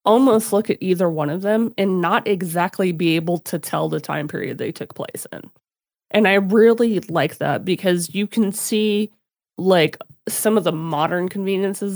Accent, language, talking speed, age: American, English, 180 wpm, 30-49